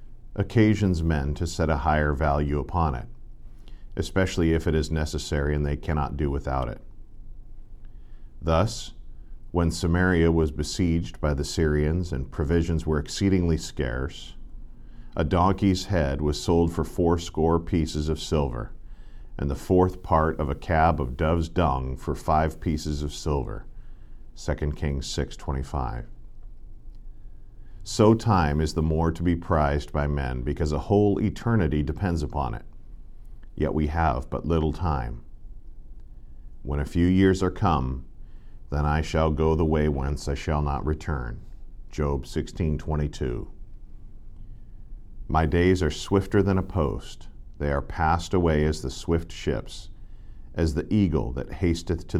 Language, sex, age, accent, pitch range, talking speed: English, male, 50-69, American, 75-95 Hz, 145 wpm